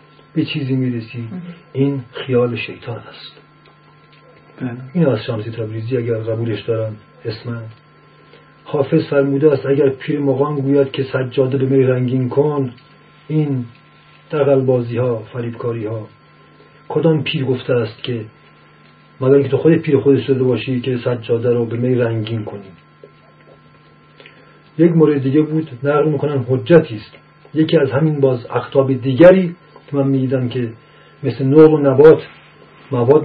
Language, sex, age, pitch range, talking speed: Persian, male, 40-59, 125-150 Hz, 140 wpm